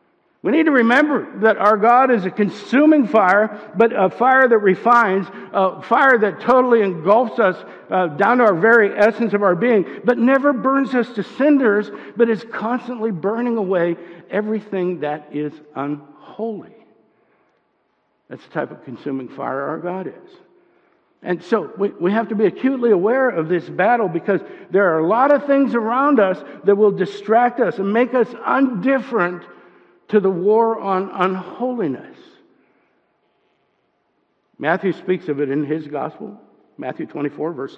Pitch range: 180-240 Hz